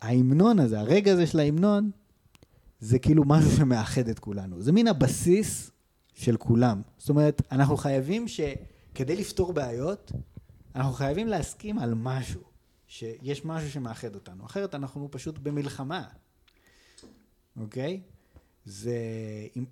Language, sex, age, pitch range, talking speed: Hebrew, male, 30-49, 110-145 Hz, 125 wpm